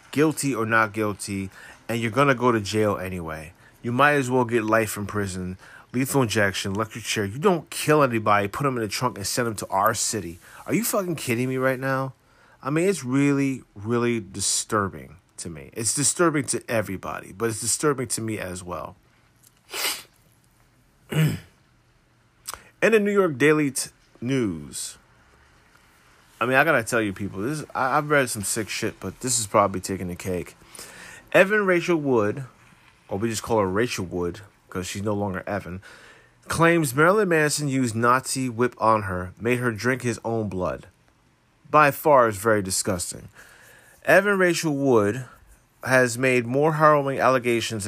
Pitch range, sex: 105-135 Hz, male